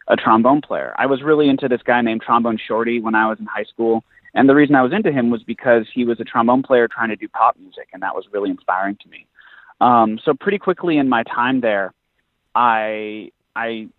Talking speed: 230 wpm